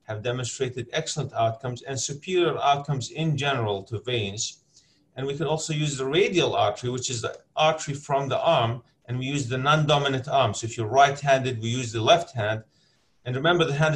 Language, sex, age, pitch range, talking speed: English, male, 30-49, 120-145 Hz, 195 wpm